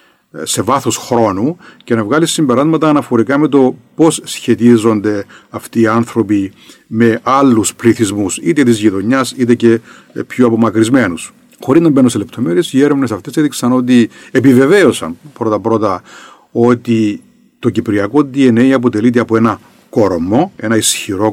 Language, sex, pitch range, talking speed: Greek, male, 110-155 Hz, 135 wpm